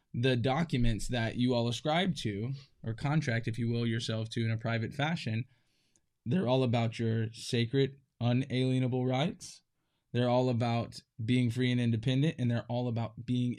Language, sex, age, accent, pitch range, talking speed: English, male, 10-29, American, 115-130 Hz, 165 wpm